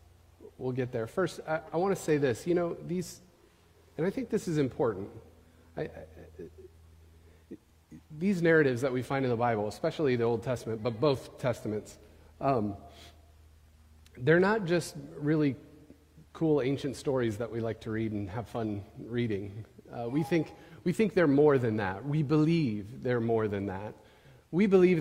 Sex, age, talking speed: male, 40-59, 160 wpm